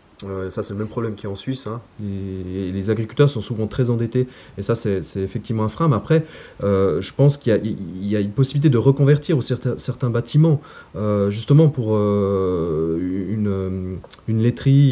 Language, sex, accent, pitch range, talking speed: French, male, French, 105-135 Hz, 200 wpm